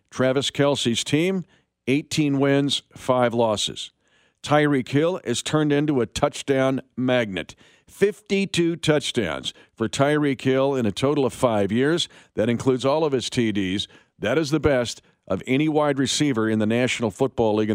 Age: 50-69